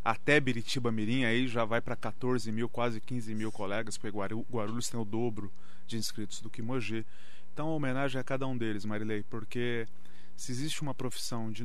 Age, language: 30-49, Portuguese